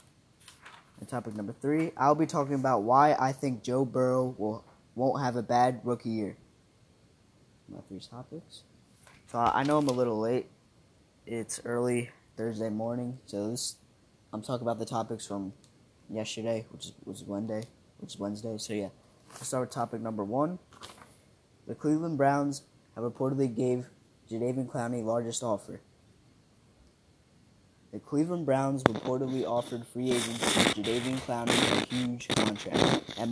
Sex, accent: male, American